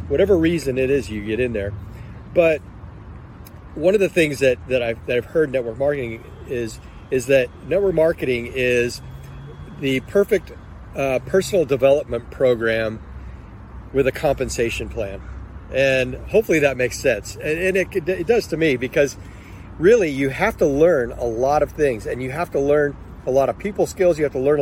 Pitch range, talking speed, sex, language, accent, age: 115-150 Hz, 180 wpm, male, English, American, 40-59